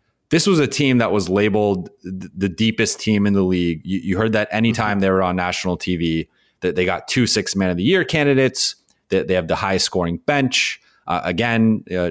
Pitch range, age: 90-115 Hz, 20-39